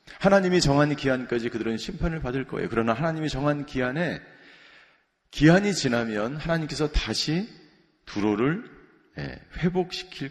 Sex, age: male, 40-59